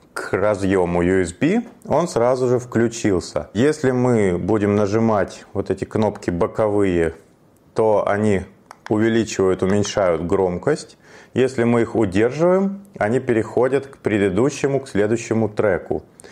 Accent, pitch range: native, 95-125 Hz